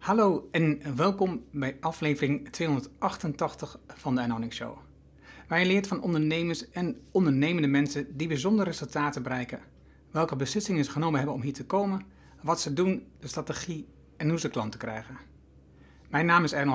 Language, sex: Dutch, male